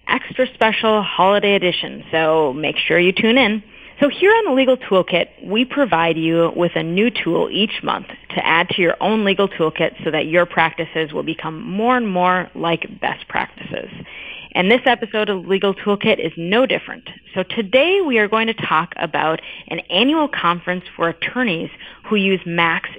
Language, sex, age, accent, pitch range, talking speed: English, female, 30-49, American, 175-235 Hz, 180 wpm